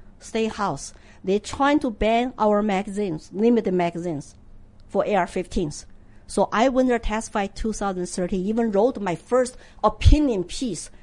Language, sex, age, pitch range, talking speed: English, female, 50-69, 210-320 Hz, 140 wpm